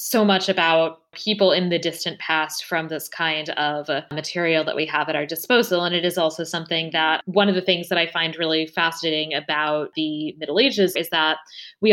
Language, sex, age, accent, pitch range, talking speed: English, female, 20-39, American, 160-185 Hz, 210 wpm